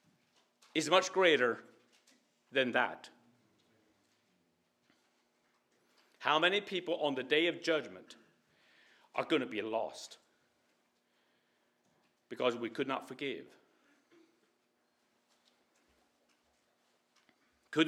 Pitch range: 180-225 Hz